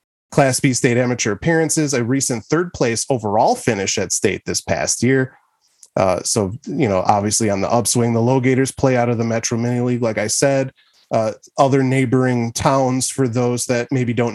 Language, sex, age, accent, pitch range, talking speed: English, male, 30-49, American, 115-135 Hz, 190 wpm